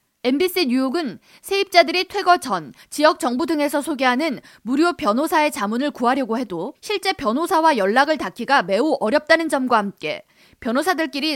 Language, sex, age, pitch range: Korean, female, 20-39, 255-340 Hz